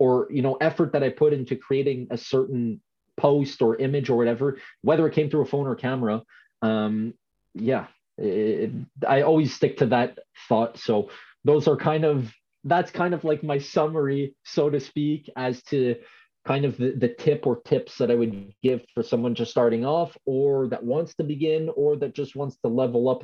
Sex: male